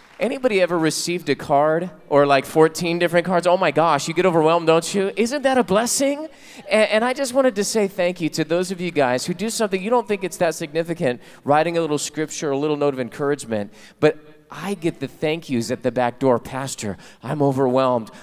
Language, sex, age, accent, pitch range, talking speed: English, male, 30-49, American, 120-160 Hz, 220 wpm